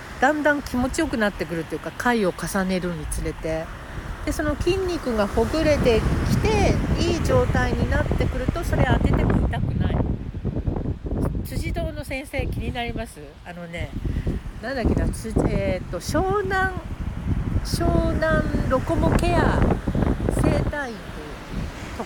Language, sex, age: Japanese, female, 60-79